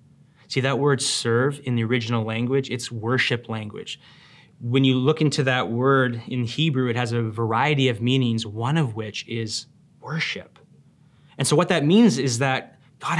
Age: 30-49